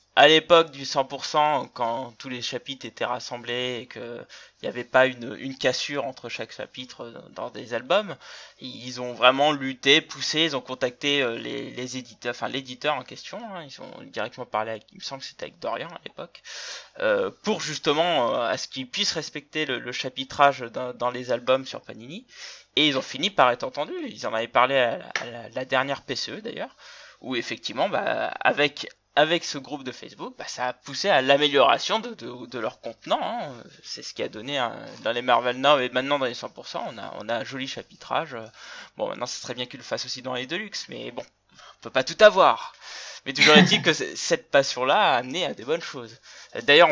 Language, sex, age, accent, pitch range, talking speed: French, male, 20-39, French, 125-165 Hz, 215 wpm